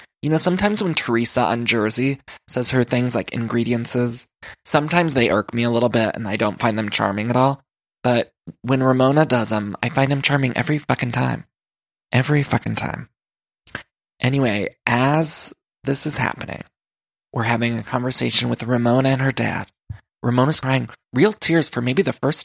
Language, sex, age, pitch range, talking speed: English, male, 20-39, 115-140 Hz, 170 wpm